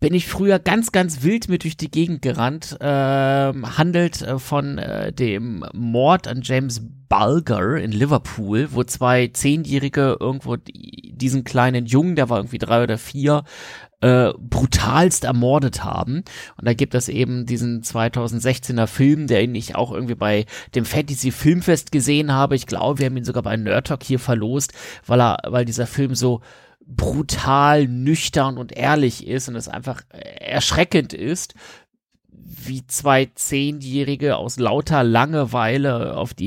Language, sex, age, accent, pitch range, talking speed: German, male, 30-49, German, 115-145 Hz, 150 wpm